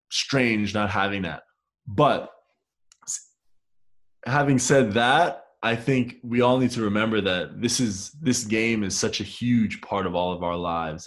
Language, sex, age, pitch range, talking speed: English, male, 20-39, 90-110 Hz, 165 wpm